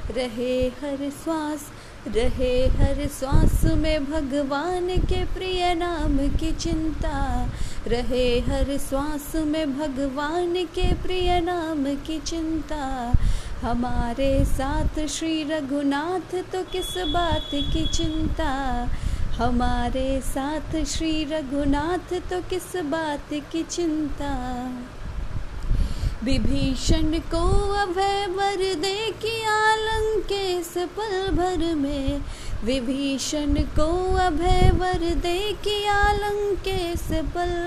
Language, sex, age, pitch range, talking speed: English, female, 20-39, 275-355 Hz, 90 wpm